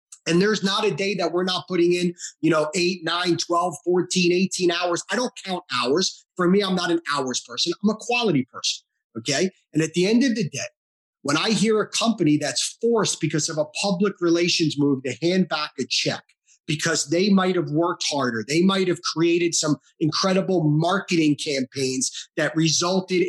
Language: English